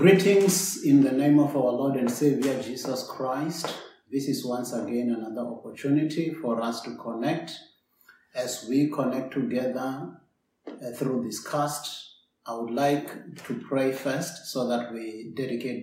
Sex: male